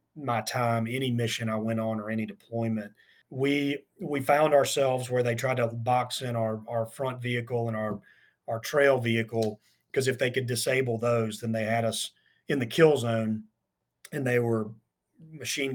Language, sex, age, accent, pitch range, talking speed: English, male, 40-59, American, 110-125 Hz, 180 wpm